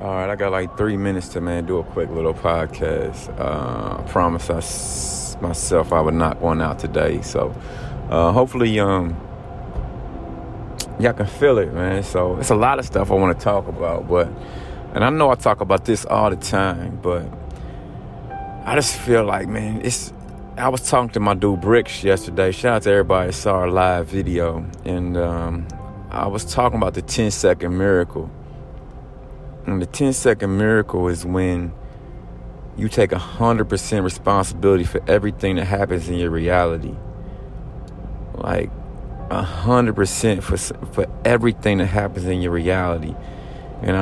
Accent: American